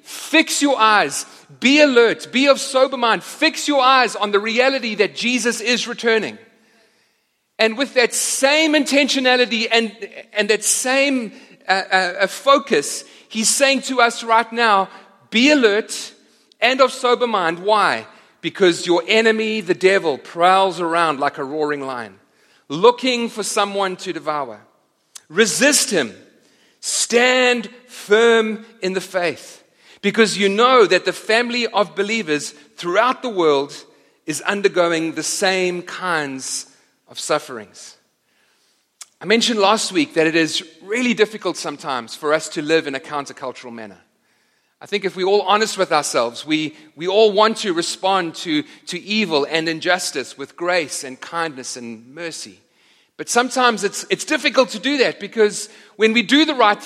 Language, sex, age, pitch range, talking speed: English, male, 40-59, 175-240 Hz, 150 wpm